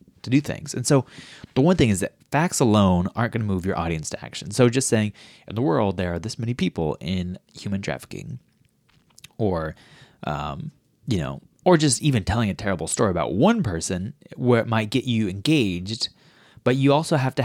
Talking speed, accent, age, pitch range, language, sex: 205 wpm, American, 30-49, 95-130 Hz, English, male